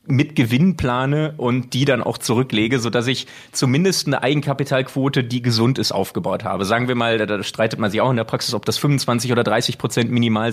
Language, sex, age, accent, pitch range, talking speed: German, male, 30-49, German, 115-140 Hz, 210 wpm